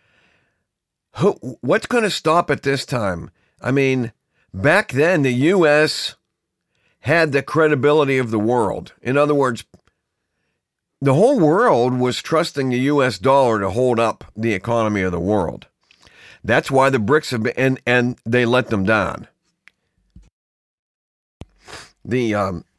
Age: 50-69